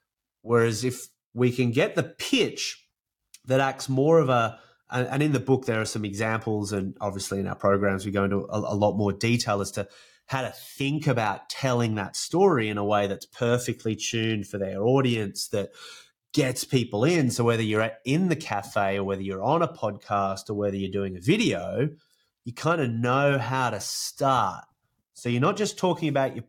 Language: English